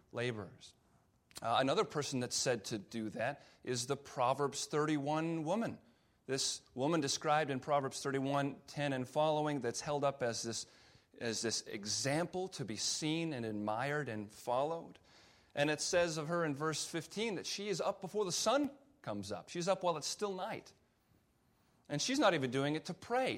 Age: 30-49